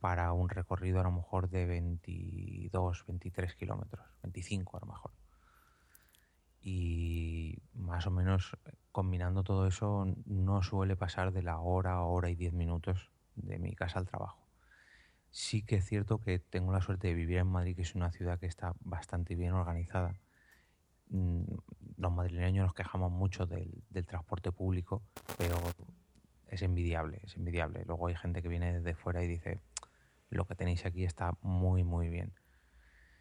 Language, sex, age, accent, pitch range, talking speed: Spanish, male, 30-49, Spanish, 85-95 Hz, 160 wpm